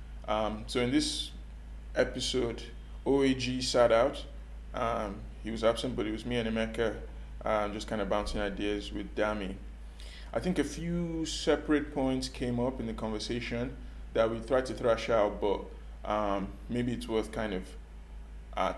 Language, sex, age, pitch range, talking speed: English, male, 20-39, 95-120 Hz, 165 wpm